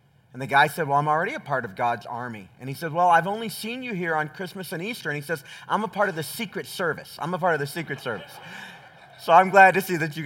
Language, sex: English, male